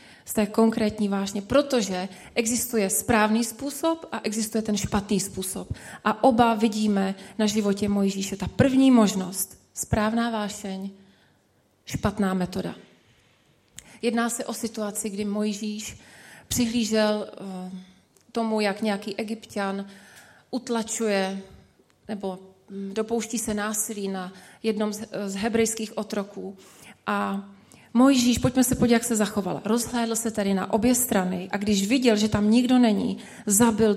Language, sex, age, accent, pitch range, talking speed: Czech, female, 30-49, native, 195-225 Hz, 120 wpm